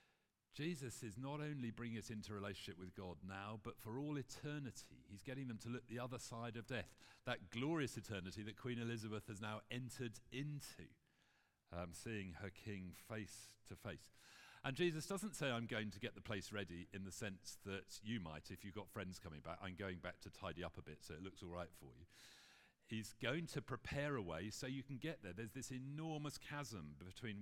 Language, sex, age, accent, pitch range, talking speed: English, male, 40-59, British, 90-120 Hz, 210 wpm